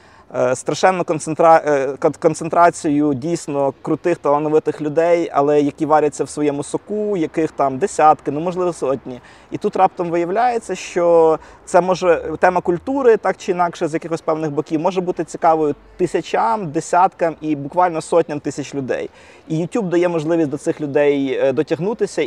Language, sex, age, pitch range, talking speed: Ukrainian, male, 20-39, 155-190 Hz, 145 wpm